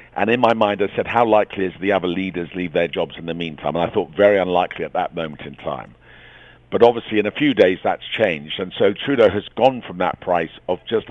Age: 50-69